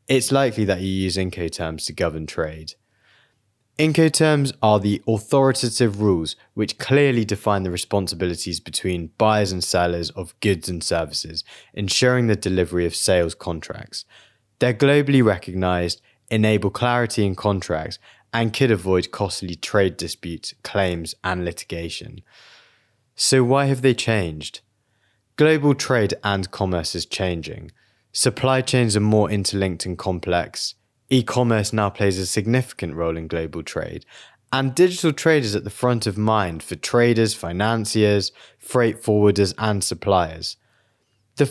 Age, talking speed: 20-39, 135 wpm